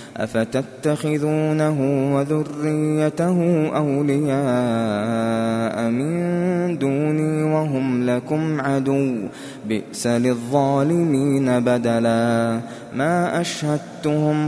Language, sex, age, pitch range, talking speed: Arabic, male, 20-39, 125-160 Hz, 55 wpm